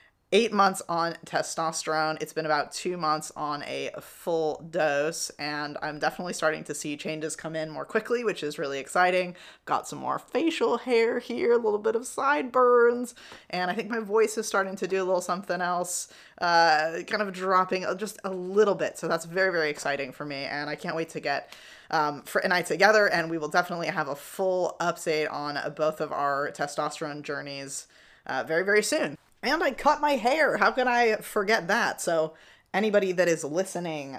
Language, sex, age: English, female, 20-39